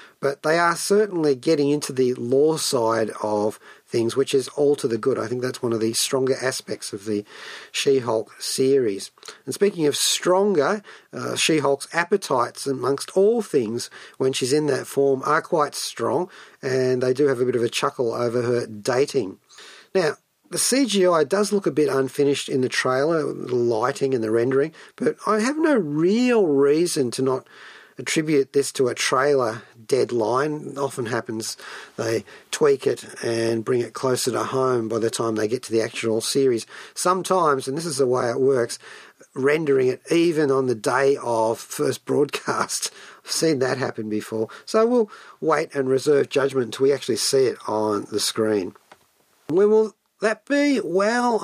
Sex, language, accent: male, English, Australian